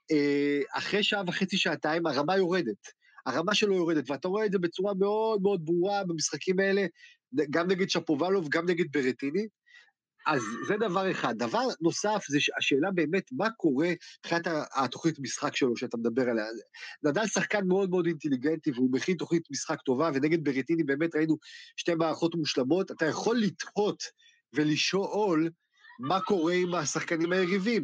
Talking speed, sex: 150 wpm, male